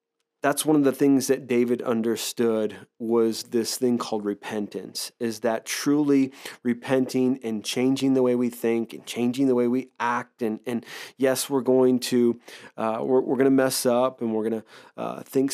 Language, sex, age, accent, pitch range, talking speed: English, male, 30-49, American, 115-140 Hz, 180 wpm